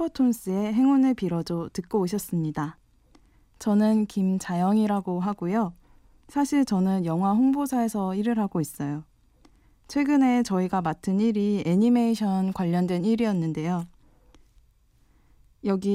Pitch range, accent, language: 170-225 Hz, native, Korean